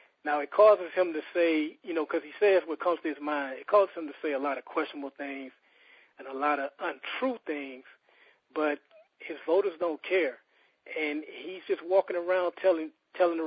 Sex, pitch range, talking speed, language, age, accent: male, 150-190 Hz, 200 wpm, English, 40-59, American